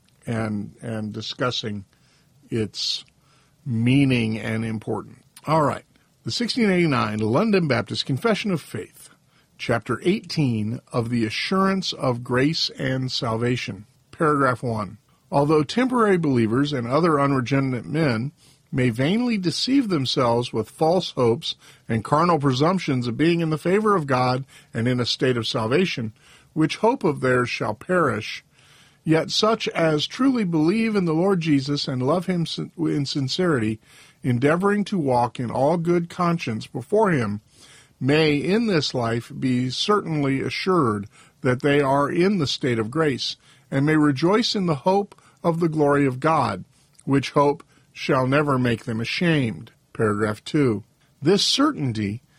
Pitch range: 125-165 Hz